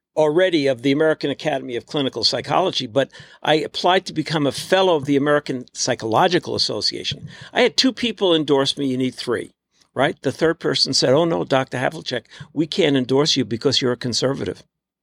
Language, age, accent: English, 60-79, American